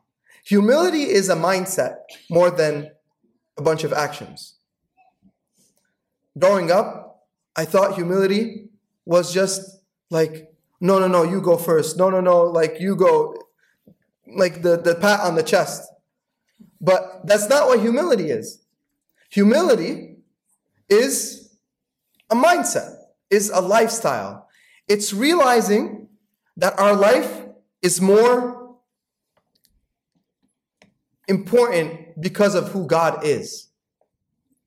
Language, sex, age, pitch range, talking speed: English, male, 30-49, 175-225 Hz, 110 wpm